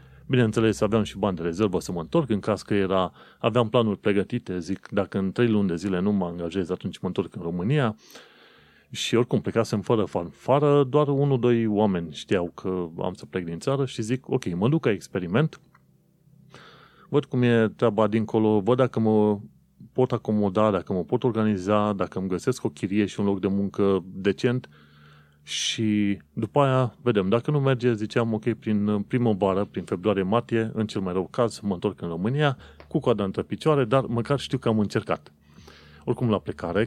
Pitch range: 95-125 Hz